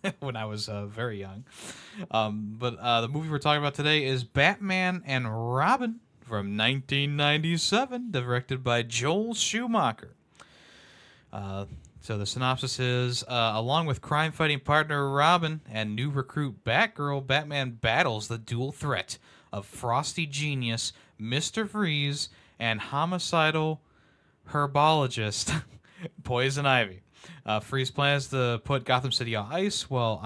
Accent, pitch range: American, 115-155 Hz